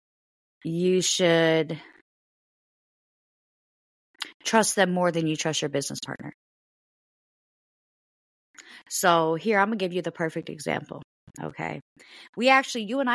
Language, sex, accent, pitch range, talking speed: English, female, American, 145-175 Hz, 120 wpm